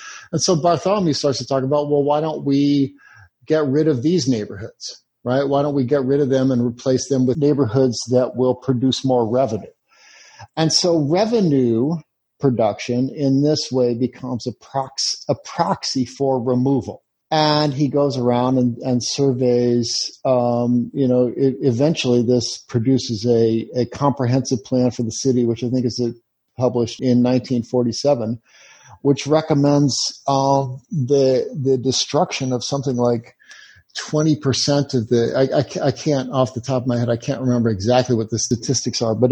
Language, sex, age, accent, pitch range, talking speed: English, male, 50-69, American, 120-140 Hz, 160 wpm